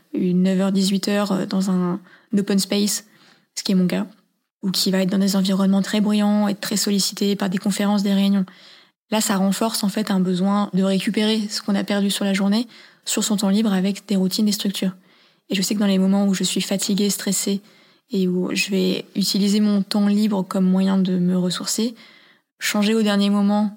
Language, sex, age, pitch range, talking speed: French, female, 20-39, 190-210 Hz, 205 wpm